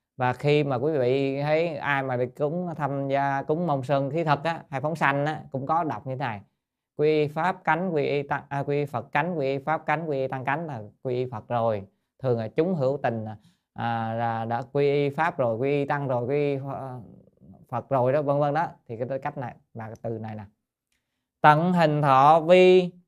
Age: 20-39